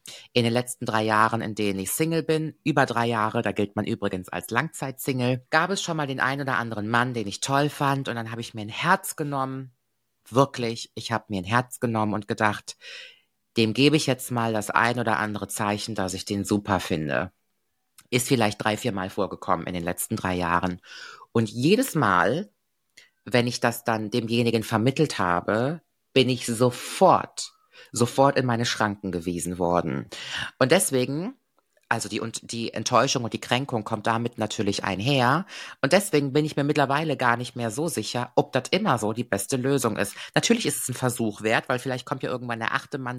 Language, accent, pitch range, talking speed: German, German, 110-140 Hz, 195 wpm